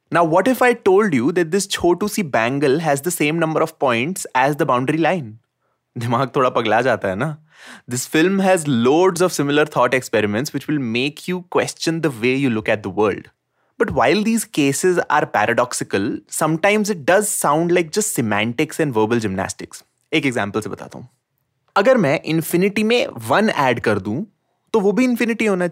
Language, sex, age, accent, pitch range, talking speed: English, male, 20-39, Indian, 120-180 Hz, 180 wpm